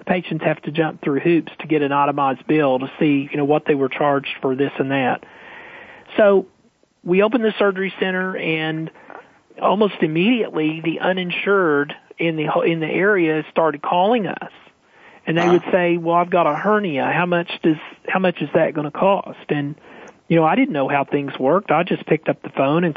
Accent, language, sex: American, English, male